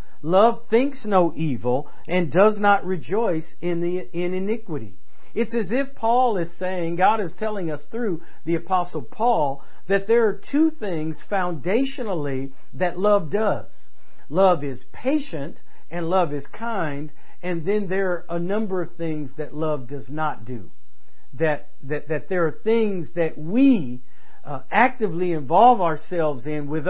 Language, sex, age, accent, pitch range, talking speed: English, male, 50-69, American, 150-195 Hz, 155 wpm